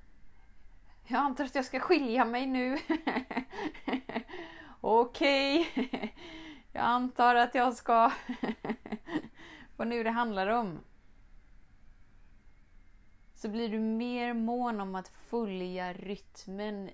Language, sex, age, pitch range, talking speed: Swedish, female, 20-39, 170-225 Hz, 100 wpm